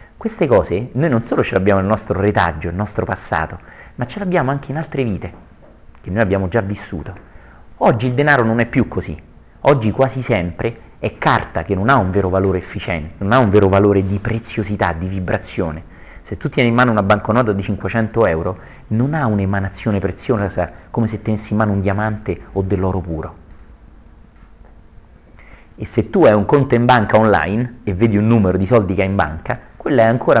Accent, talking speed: native, 200 wpm